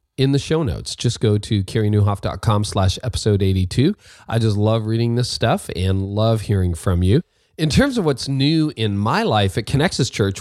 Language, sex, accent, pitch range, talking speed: English, male, American, 100-125 Hz, 190 wpm